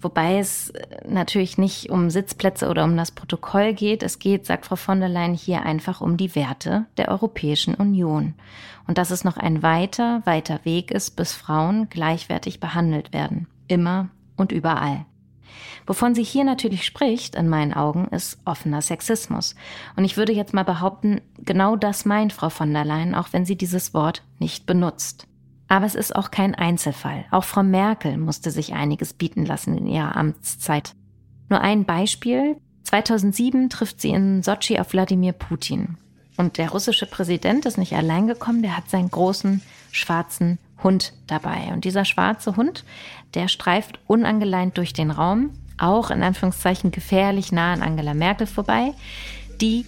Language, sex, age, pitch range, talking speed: German, female, 30-49, 160-205 Hz, 165 wpm